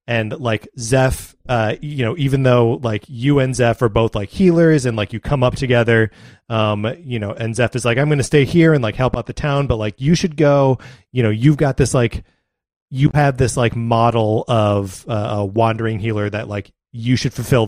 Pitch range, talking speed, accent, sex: 110-135 Hz, 225 wpm, American, male